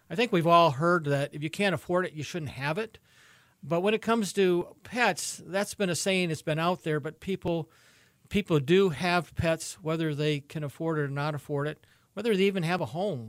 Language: English